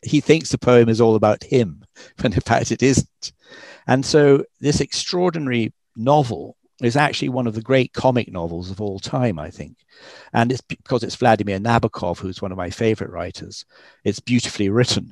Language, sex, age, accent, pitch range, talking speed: English, male, 50-69, British, 100-125 Hz, 185 wpm